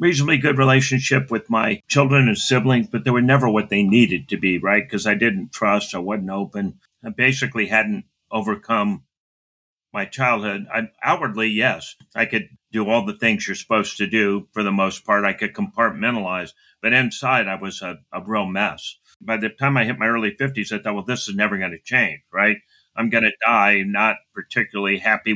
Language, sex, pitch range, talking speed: English, male, 100-125 Hz, 200 wpm